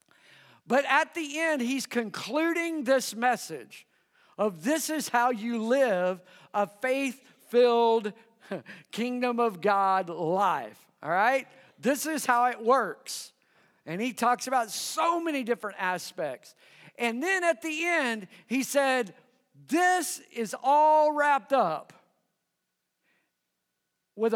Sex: male